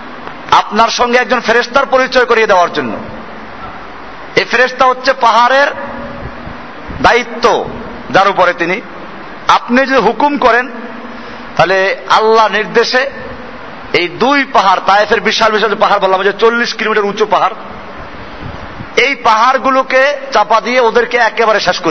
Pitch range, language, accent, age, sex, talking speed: 200-245 Hz, Bengali, native, 50-69, male, 70 wpm